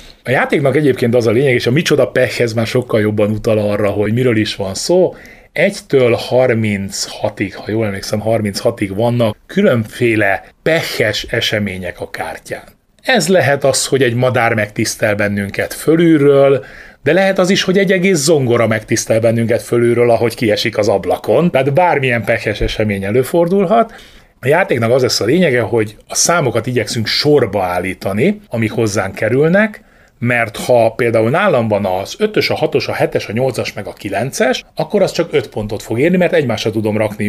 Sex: male